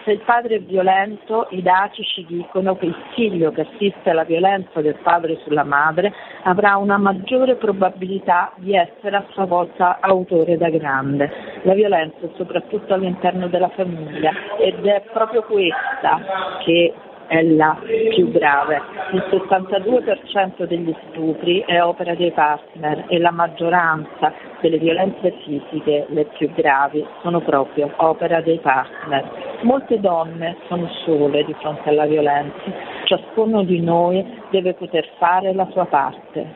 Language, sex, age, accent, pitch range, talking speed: Italian, female, 40-59, native, 155-195 Hz, 145 wpm